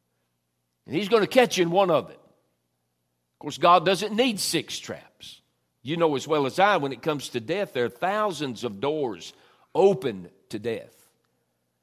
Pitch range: 110-150 Hz